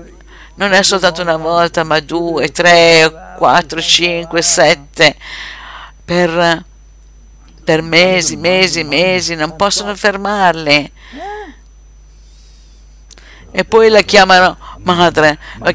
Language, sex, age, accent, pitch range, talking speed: Italian, female, 50-69, native, 155-195 Hz, 95 wpm